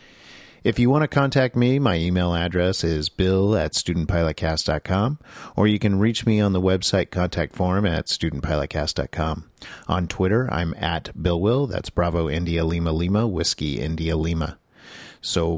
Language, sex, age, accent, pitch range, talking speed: English, male, 40-59, American, 85-105 Hz, 155 wpm